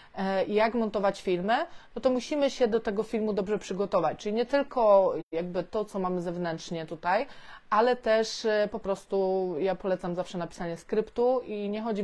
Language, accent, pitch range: Polish, native, 180-220 Hz